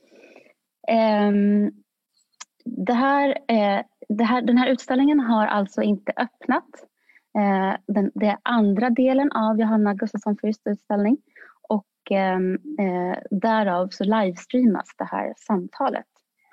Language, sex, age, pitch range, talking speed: Swedish, female, 20-39, 200-245 Hz, 115 wpm